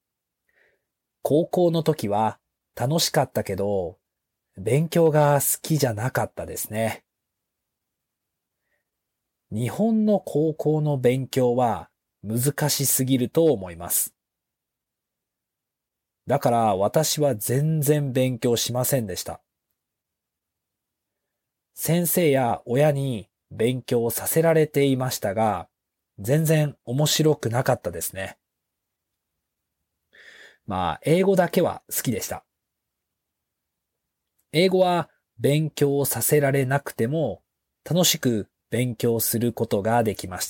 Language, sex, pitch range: Japanese, male, 105-145 Hz